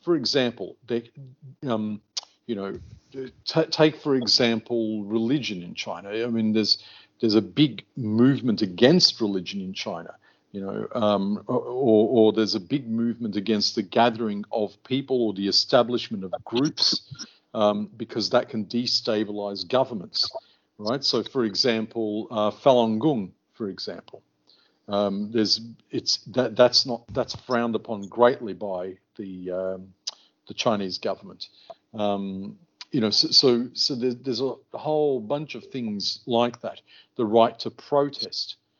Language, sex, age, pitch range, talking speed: English, male, 50-69, 105-130 Hz, 145 wpm